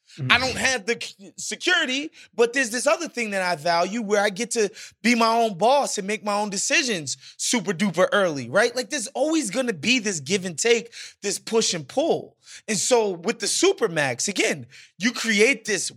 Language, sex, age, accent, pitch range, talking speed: English, male, 20-39, American, 175-235 Hz, 200 wpm